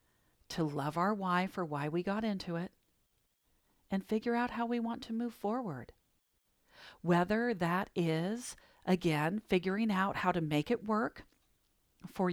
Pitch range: 160-240 Hz